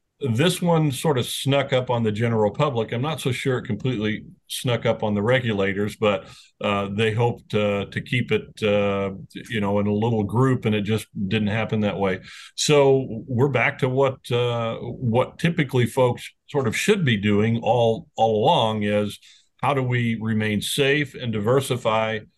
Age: 50-69